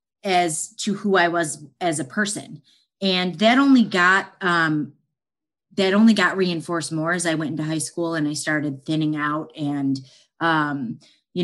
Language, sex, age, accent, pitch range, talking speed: English, female, 30-49, American, 150-175 Hz, 170 wpm